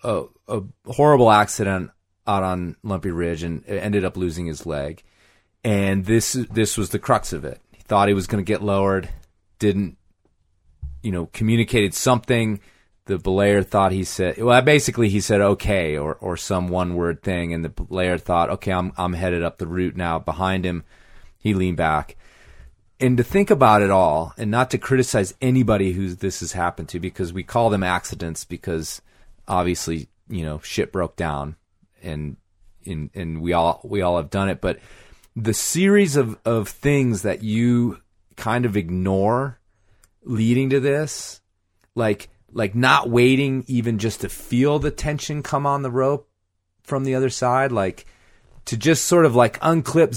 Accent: American